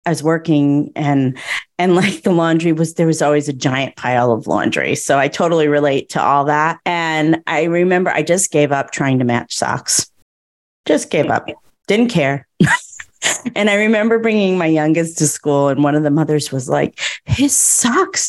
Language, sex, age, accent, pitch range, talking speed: English, female, 30-49, American, 145-200 Hz, 185 wpm